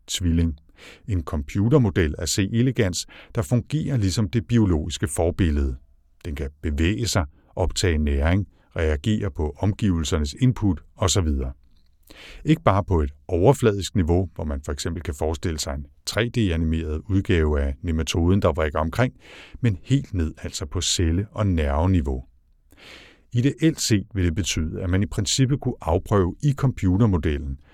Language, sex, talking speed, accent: English, male, 150 wpm, Danish